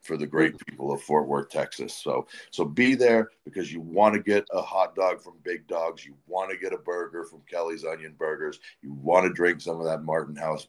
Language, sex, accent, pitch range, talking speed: English, male, American, 80-100 Hz, 235 wpm